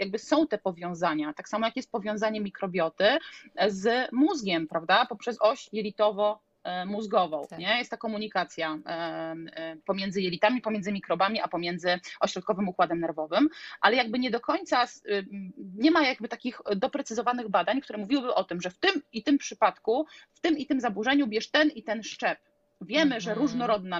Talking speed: 155 wpm